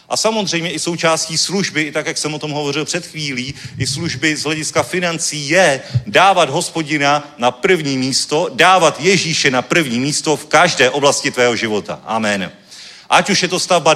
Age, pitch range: 40-59, 145-170 Hz